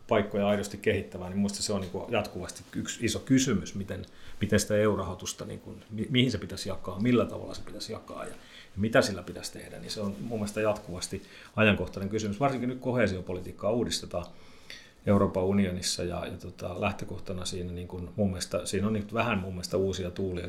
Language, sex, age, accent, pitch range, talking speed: Finnish, male, 40-59, native, 90-105 Hz, 140 wpm